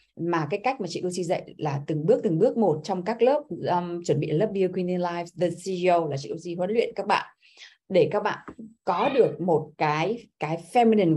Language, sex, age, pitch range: Vietnamese, female, 20-39, 160-210 Hz